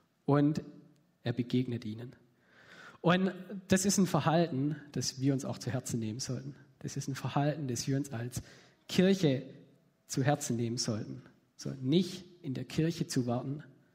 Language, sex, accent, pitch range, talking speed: German, male, German, 125-155 Hz, 165 wpm